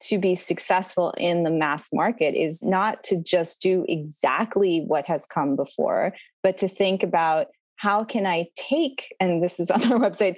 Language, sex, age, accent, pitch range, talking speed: English, female, 20-39, American, 165-205 Hz, 180 wpm